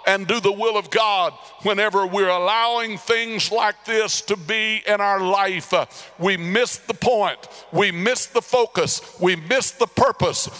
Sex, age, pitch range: male, 60-79, 200-245 Hz